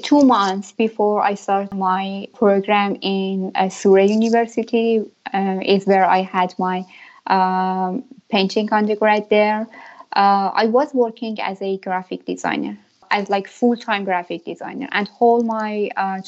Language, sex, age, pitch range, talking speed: English, female, 10-29, 190-230 Hz, 135 wpm